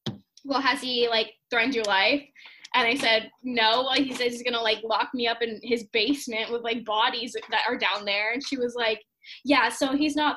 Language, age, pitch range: English, 10-29, 230-290 Hz